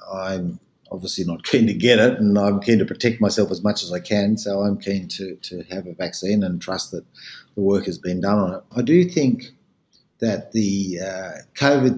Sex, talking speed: male, 215 wpm